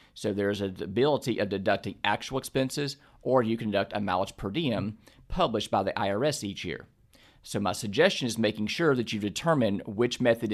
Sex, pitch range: male, 100-125 Hz